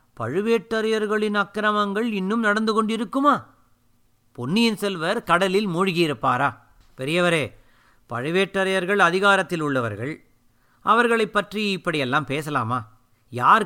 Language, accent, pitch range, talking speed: Tamil, native, 145-205 Hz, 80 wpm